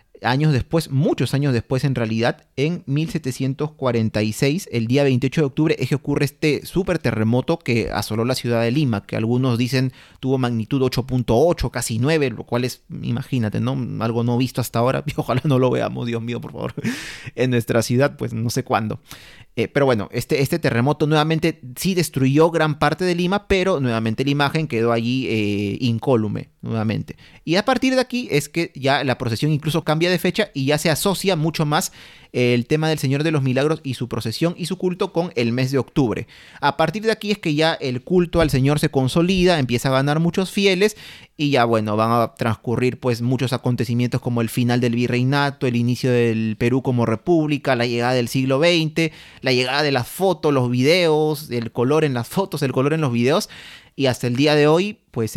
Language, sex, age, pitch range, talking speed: Spanish, male, 30-49, 120-155 Hz, 200 wpm